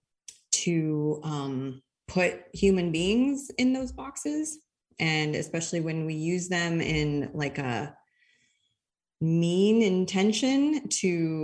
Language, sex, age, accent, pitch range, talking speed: English, female, 20-39, American, 160-210 Hz, 105 wpm